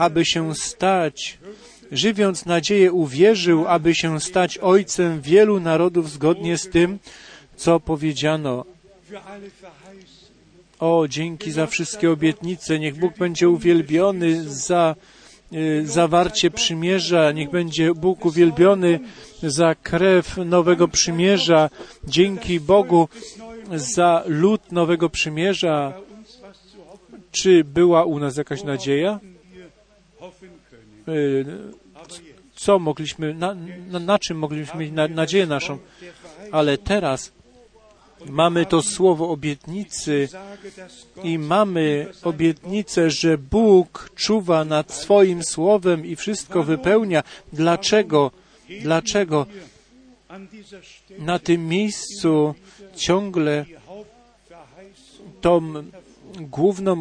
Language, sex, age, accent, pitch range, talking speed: Polish, male, 40-59, native, 160-195 Hz, 90 wpm